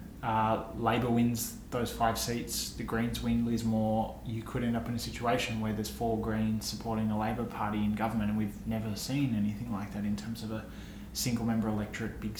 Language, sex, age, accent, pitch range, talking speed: English, male, 20-39, Australian, 110-135 Hz, 210 wpm